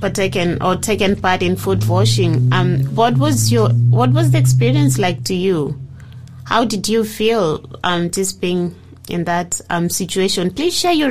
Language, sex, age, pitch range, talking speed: English, female, 20-39, 170-210 Hz, 175 wpm